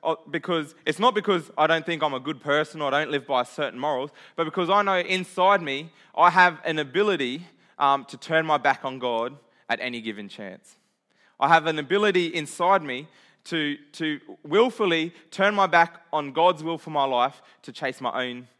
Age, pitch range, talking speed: 20-39, 130-175 Hz, 195 wpm